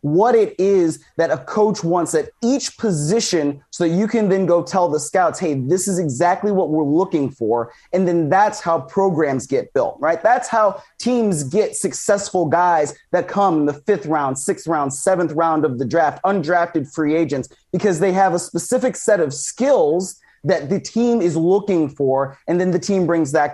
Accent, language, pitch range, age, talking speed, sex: American, English, 150-190 Hz, 30-49, 195 wpm, male